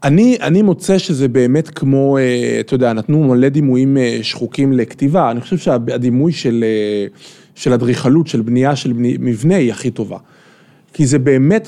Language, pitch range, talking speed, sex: Hebrew, 125-180 Hz, 150 wpm, male